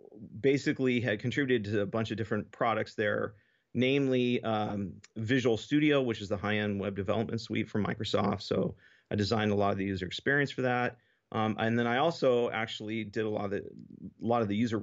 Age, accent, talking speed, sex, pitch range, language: 40-59, American, 205 wpm, male, 105-120 Hz, English